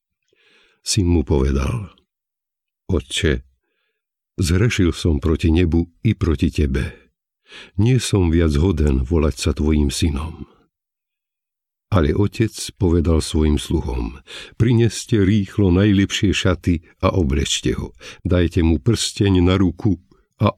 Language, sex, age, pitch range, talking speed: Slovak, male, 60-79, 80-105 Hz, 110 wpm